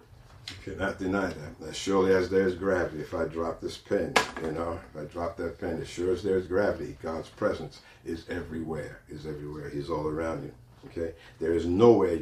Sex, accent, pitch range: male, American, 85-105 Hz